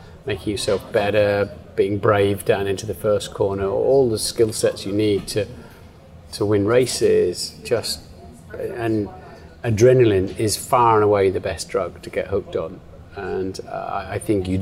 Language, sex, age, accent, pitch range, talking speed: English, male, 30-49, British, 95-115 Hz, 160 wpm